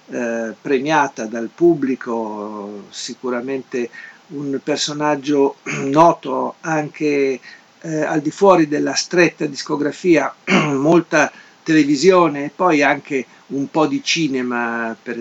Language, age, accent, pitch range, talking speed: Italian, 50-69, native, 125-160 Hz, 105 wpm